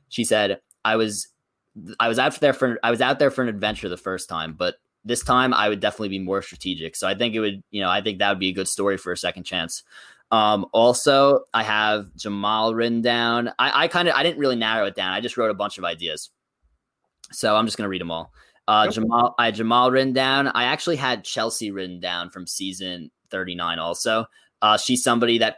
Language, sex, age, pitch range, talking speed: English, male, 20-39, 95-115 Hz, 230 wpm